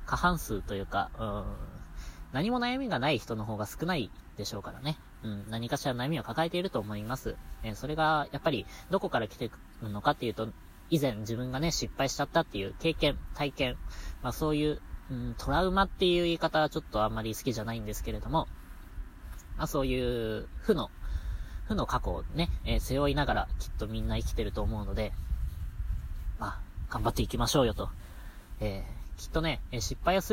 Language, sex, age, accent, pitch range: Japanese, female, 20-39, native, 100-145 Hz